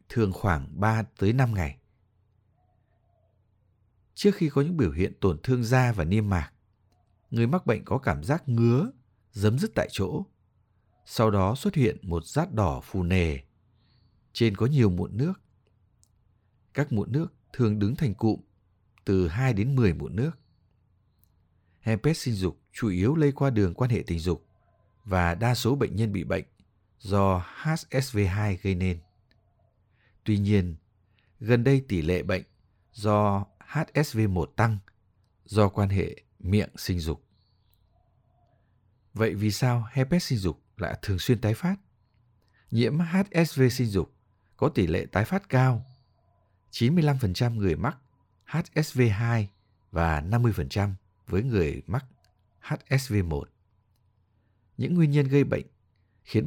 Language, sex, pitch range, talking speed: Vietnamese, male, 95-120 Hz, 135 wpm